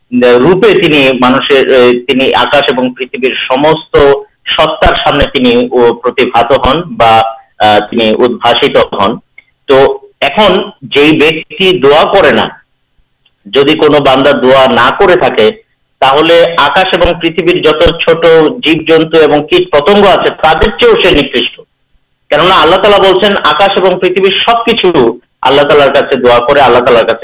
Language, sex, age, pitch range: Urdu, male, 50-69, 140-205 Hz